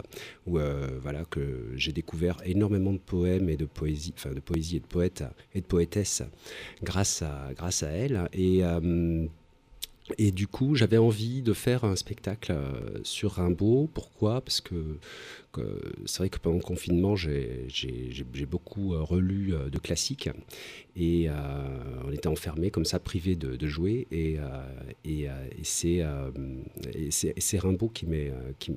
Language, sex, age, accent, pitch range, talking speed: French, male, 40-59, French, 80-100 Hz, 170 wpm